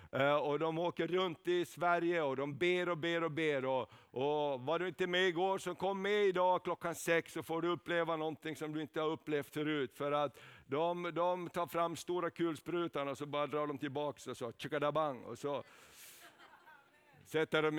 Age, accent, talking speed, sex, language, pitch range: 50-69, native, 185 wpm, male, Swedish, 165-190 Hz